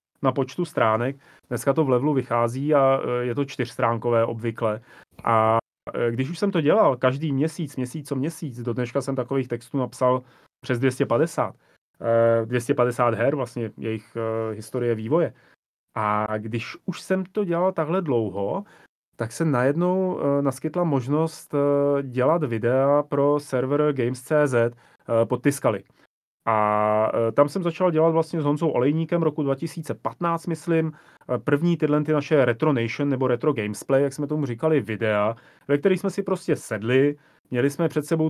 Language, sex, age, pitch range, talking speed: Slovak, male, 30-49, 120-145 Hz, 145 wpm